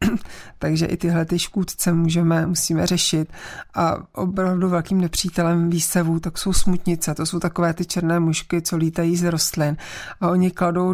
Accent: native